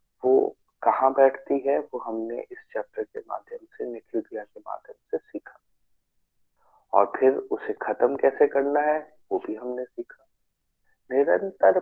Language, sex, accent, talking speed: Hindi, male, native, 135 wpm